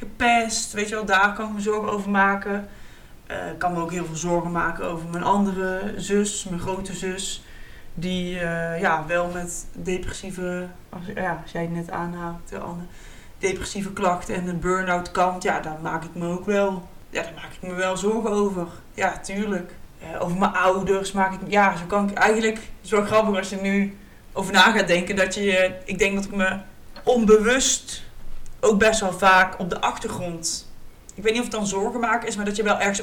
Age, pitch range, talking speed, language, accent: 20-39, 175-200 Hz, 205 wpm, Dutch, Dutch